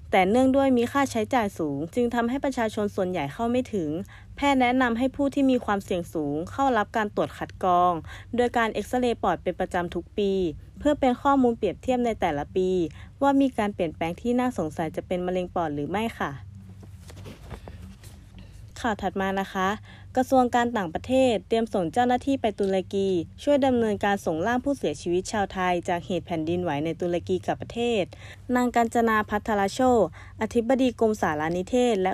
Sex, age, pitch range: female, 20-39, 175-240 Hz